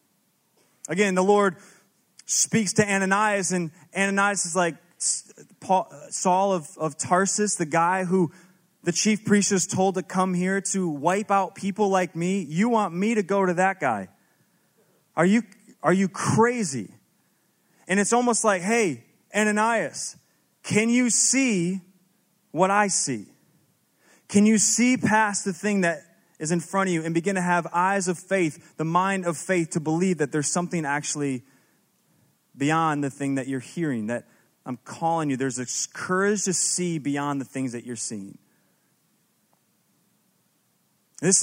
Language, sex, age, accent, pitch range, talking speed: English, male, 30-49, American, 145-195 Hz, 155 wpm